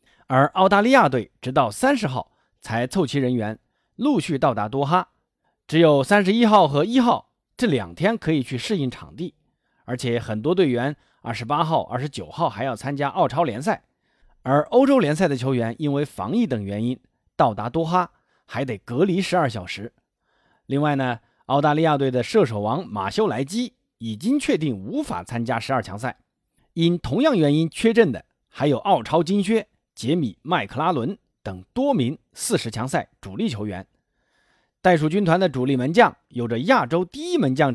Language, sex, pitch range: Chinese, male, 125-185 Hz